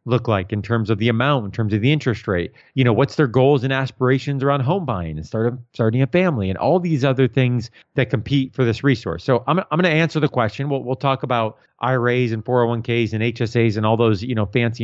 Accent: American